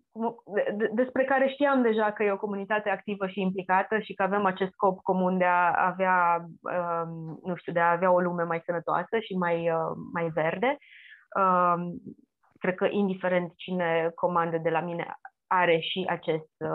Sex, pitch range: female, 170-205 Hz